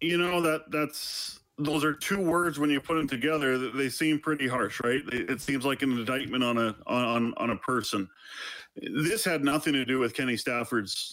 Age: 40-59